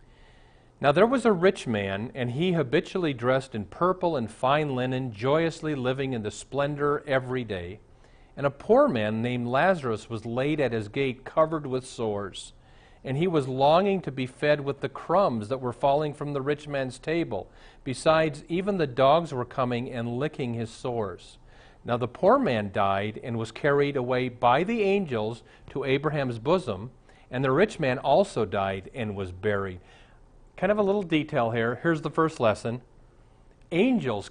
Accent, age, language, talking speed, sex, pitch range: American, 50-69, English, 175 wpm, male, 115-160 Hz